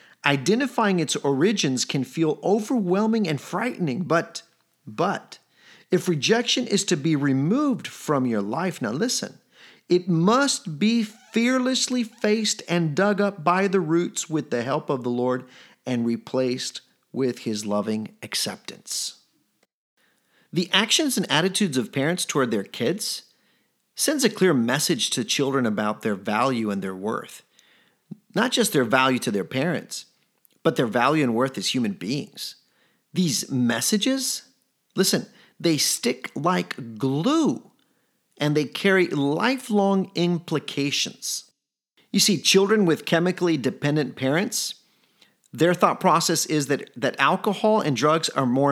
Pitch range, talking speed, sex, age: 140-225 Hz, 135 wpm, male, 40-59